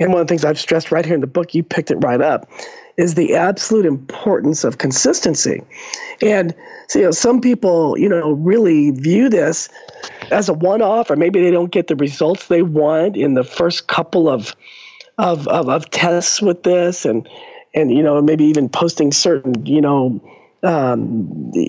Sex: male